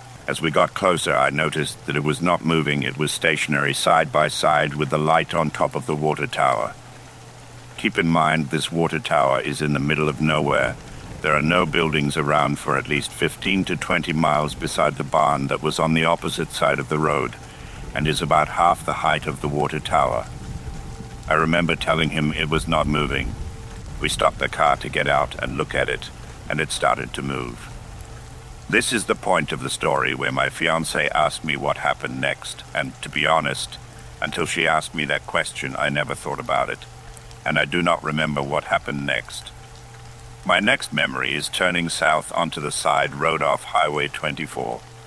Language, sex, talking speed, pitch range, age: English, male, 195 wpm, 70-85 Hz, 60-79